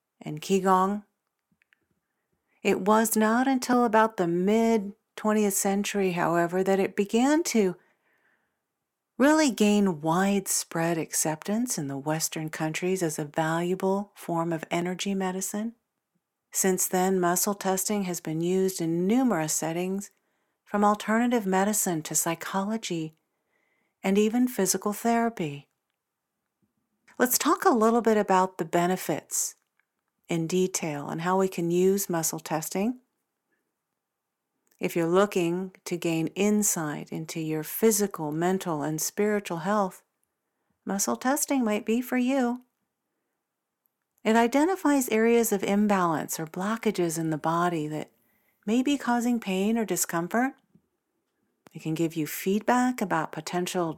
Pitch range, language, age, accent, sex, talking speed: 170-225 Hz, English, 50-69, American, female, 120 wpm